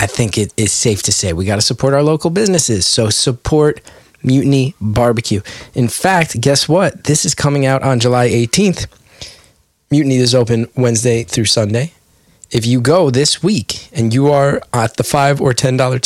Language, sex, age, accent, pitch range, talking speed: English, male, 20-39, American, 115-140 Hz, 180 wpm